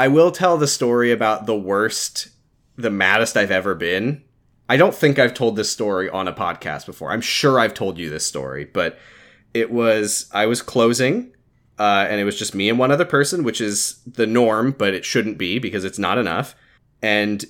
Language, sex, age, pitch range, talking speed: English, male, 20-39, 110-150 Hz, 205 wpm